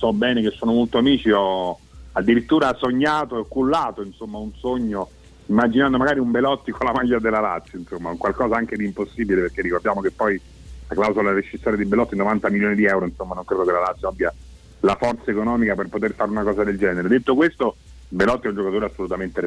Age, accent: 40-59, native